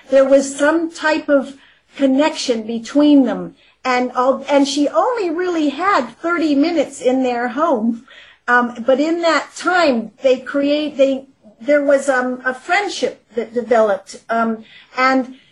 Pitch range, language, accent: 250-300 Hz, English, American